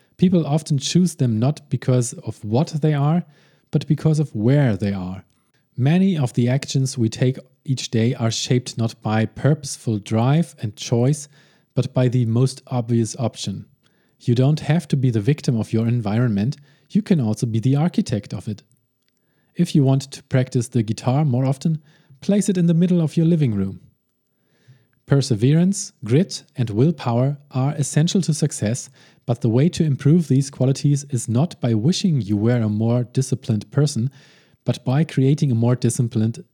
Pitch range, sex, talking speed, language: 120-150 Hz, male, 170 wpm, English